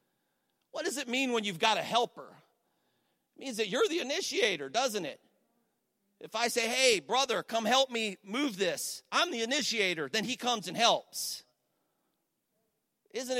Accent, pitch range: American, 205-265 Hz